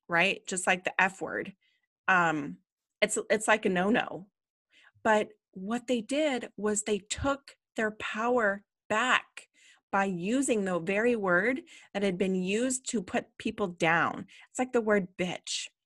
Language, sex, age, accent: English, female, 30-49, American